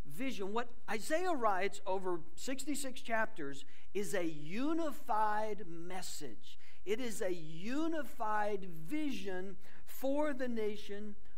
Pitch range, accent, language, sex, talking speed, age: 190-265 Hz, American, English, male, 100 wpm, 50-69